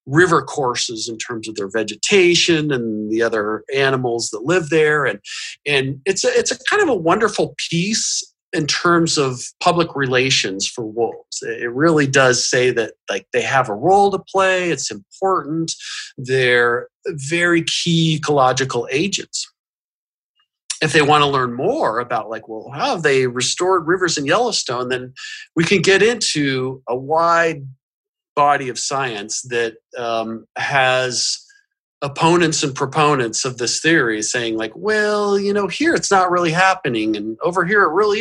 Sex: male